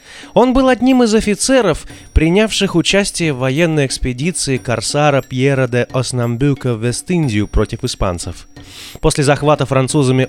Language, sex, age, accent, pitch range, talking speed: Russian, male, 20-39, native, 110-155 Hz, 120 wpm